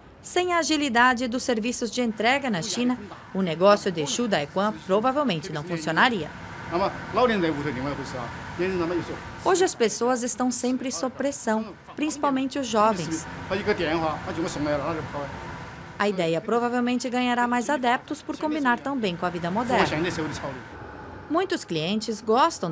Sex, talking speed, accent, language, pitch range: female, 115 wpm, Brazilian, Portuguese, 165-250 Hz